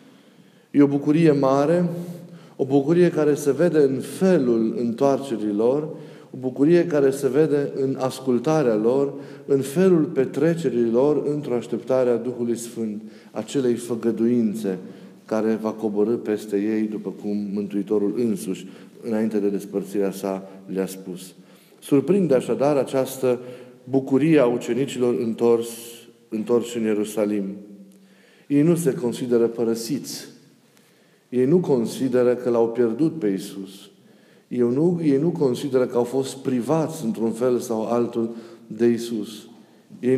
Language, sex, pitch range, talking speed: Romanian, male, 115-145 Hz, 125 wpm